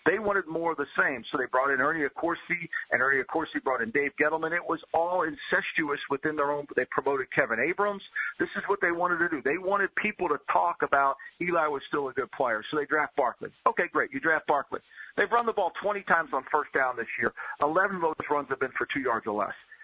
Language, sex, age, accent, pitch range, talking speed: English, male, 50-69, American, 145-185 Hz, 240 wpm